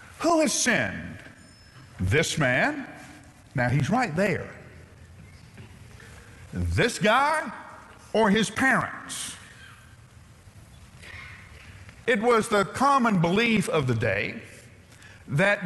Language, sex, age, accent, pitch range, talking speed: English, male, 50-69, American, 120-200 Hz, 90 wpm